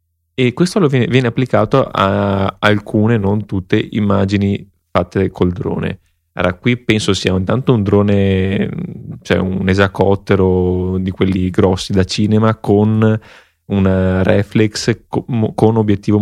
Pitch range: 90-105 Hz